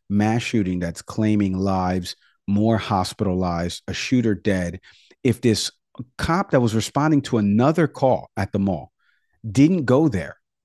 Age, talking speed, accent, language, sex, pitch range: 40-59, 140 wpm, American, English, male, 105-150 Hz